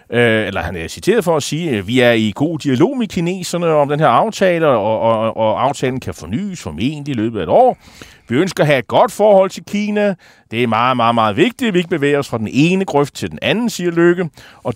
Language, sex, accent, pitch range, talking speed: Danish, male, native, 110-175 Hz, 240 wpm